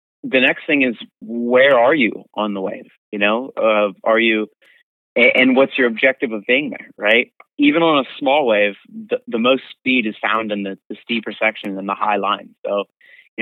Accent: American